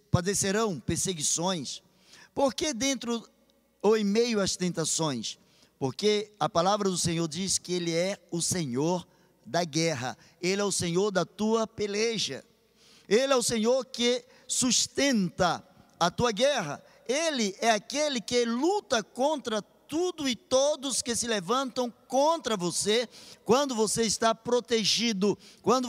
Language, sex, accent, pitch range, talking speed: Portuguese, male, Brazilian, 190-260 Hz, 135 wpm